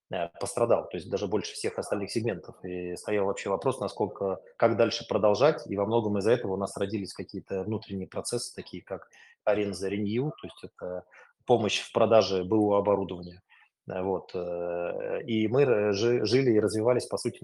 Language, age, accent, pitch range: Russian, 20-39, native, 100-115 Hz